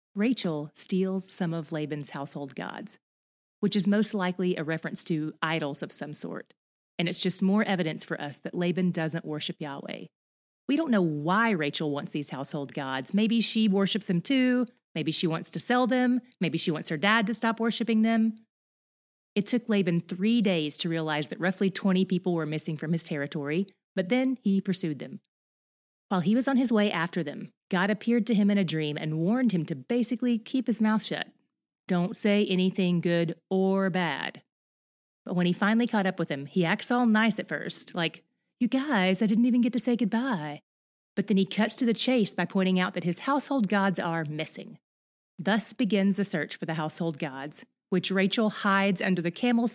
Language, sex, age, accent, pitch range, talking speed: English, female, 30-49, American, 165-215 Hz, 200 wpm